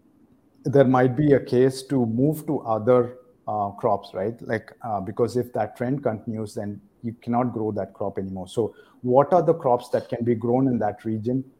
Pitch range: 110-135 Hz